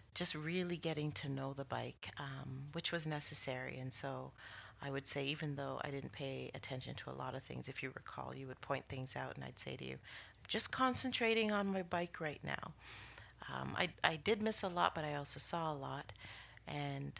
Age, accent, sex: 40-59, American, female